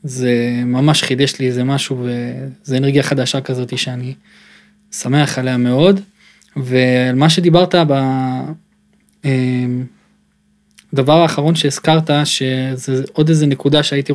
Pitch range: 135-165 Hz